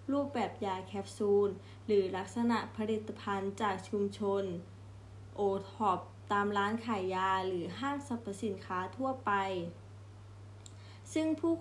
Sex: female